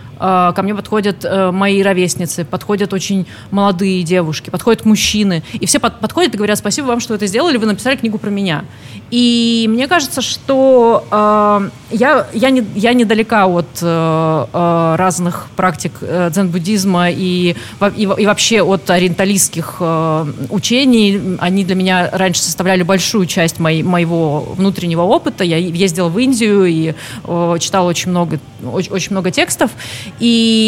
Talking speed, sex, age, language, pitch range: 150 wpm, female, 30-49, Russian, 175-215 Hz